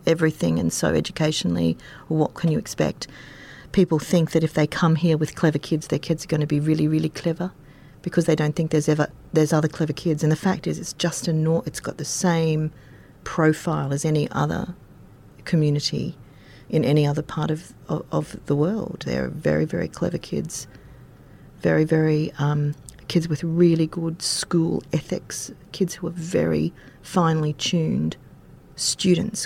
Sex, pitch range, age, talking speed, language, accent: female, 150-170 Hz, 40-59, 175 wpm, English, Australian